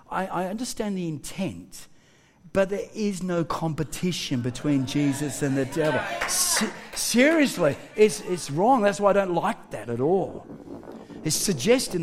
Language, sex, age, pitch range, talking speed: English, male, 50-69, 180-260 Hz, 140 wpm